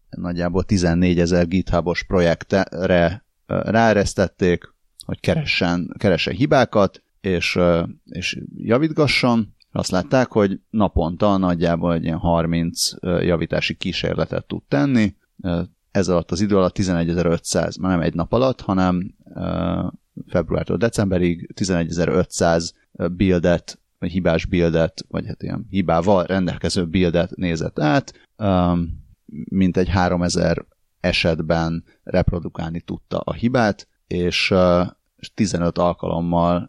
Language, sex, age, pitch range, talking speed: Hungarian, male, 30-49, 85-100 Hz, 105 wpm